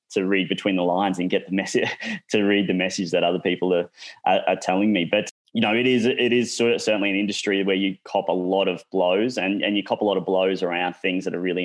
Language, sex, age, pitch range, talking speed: English, male, 20-39, 90-100 Hz, 265 wpm